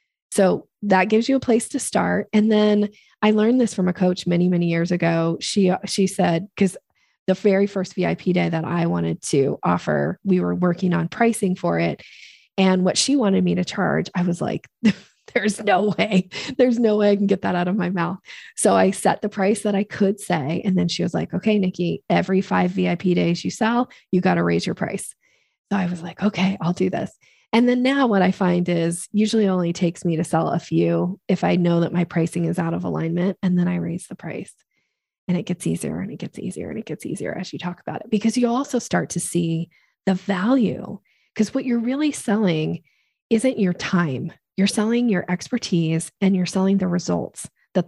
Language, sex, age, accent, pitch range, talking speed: English, female, 20-39, American, 170-205 Hz, 220 wpm